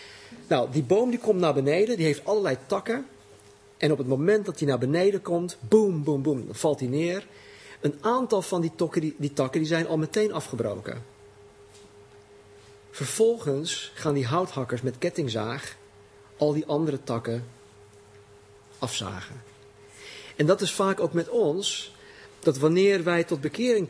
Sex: male